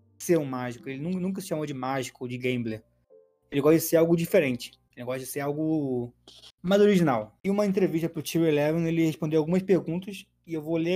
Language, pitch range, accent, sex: Portuguese, 140-170 Hz, Brazilian, male